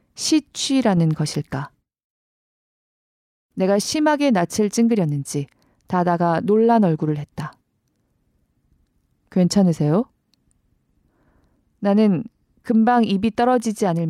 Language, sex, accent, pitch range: Korean, female, native, 165-230 Hz